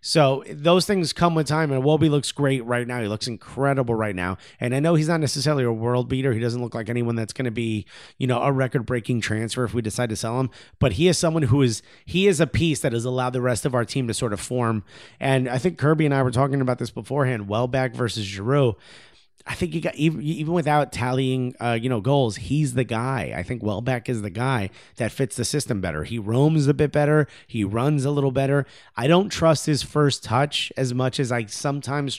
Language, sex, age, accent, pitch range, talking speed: English, male, 30-49, American, 115-145 Hz, 240 wpm